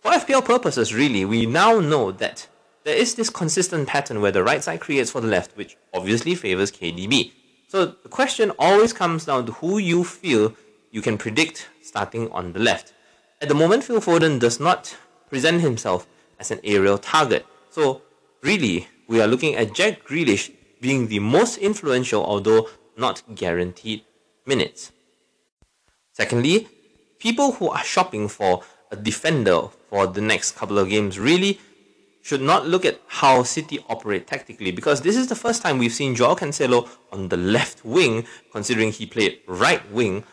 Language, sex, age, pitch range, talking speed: English, male, 30-49, 105-175 Hz, 170 wpm